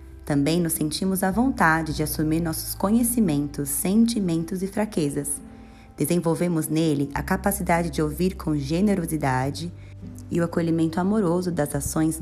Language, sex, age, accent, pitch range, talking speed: Portuguese, female, 20-39, Brazilian, 145-195 Hz, 130 wpm